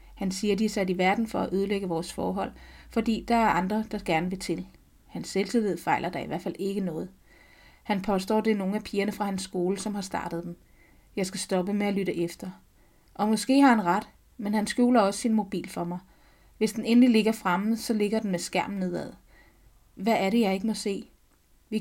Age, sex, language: 30-49, female, Danish